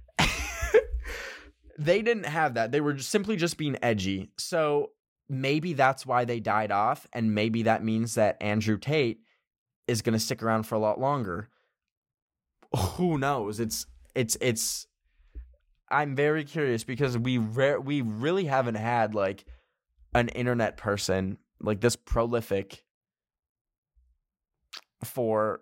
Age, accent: 20-39, American